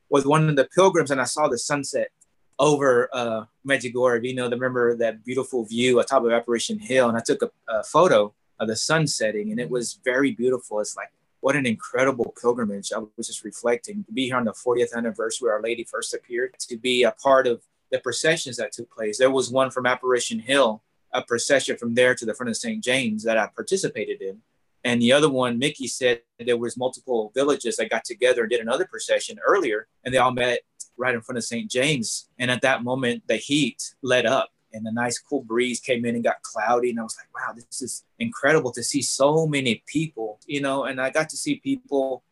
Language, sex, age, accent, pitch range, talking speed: English, male, 30-49, American, 120-140 Hz, 225 wpm